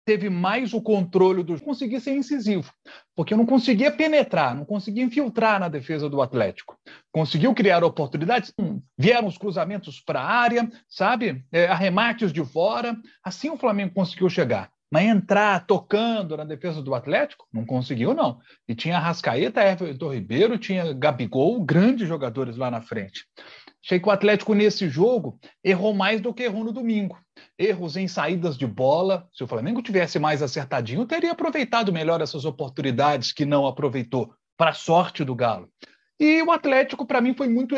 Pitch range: 160-240 Hz